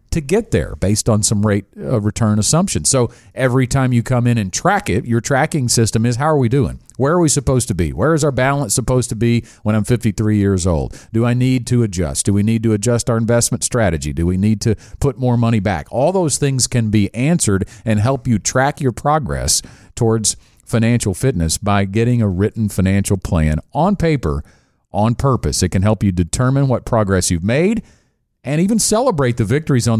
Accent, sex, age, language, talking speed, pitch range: American, male, 40-59, English, 210 wpm, 100-135 Hz